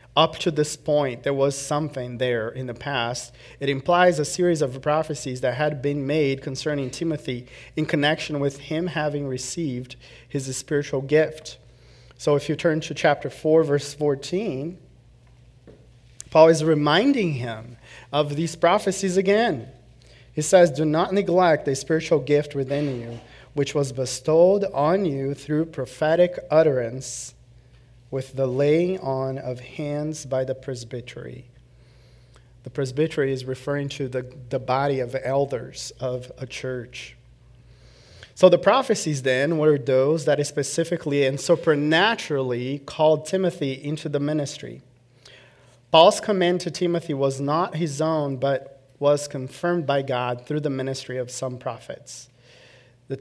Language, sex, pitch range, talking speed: English, male, 130-155 Hz, 145 wpm